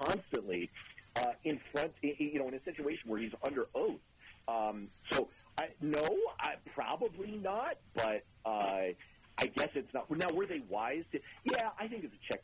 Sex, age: male, 40-59